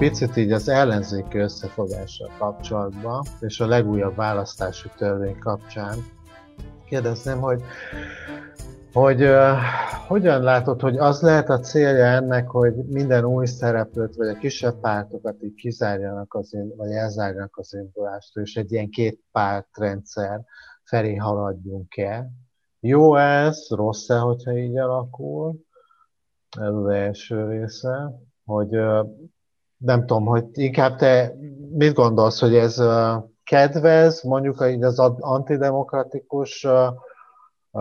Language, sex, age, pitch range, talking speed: Hungarian, male, 50-69, 105-130 Hz, 115 wpm